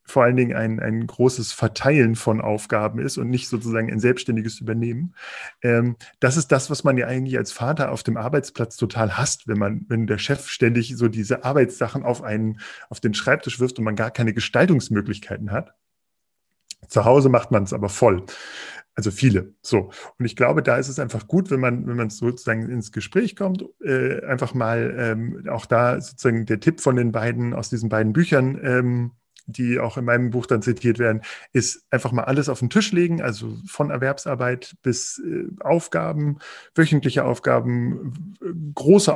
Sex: male